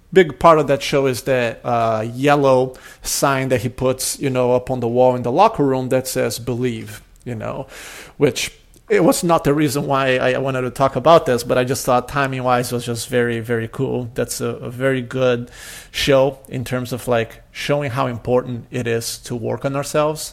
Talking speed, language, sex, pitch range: 205 wpm, English, male, 120-135 Hz